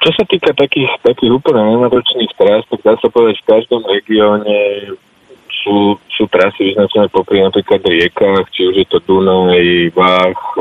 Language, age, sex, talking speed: Slovak, 20-39, male, 165 wpm